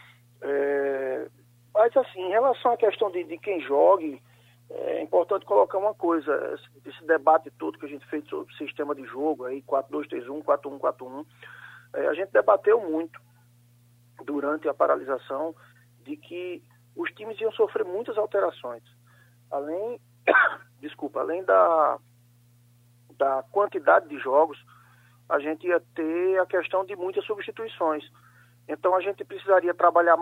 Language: Portuguese